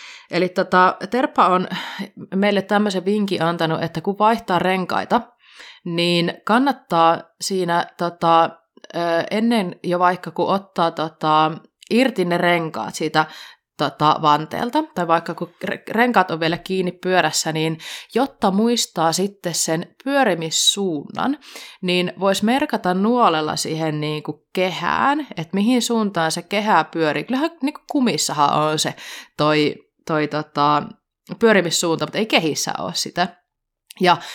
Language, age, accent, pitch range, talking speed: Finnish, 30-49, native, 160-210 Hz, 120 wpm